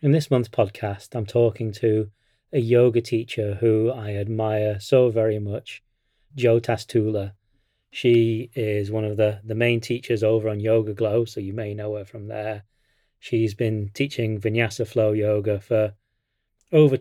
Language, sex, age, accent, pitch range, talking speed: English, male, 30-49, British, 105-120 Hz, 160 wpm